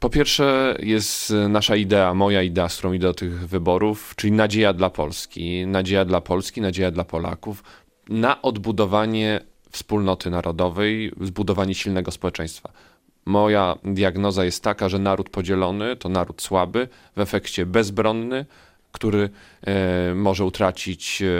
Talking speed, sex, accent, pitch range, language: 130 wpm, male, native, 90-105 Hz, Polish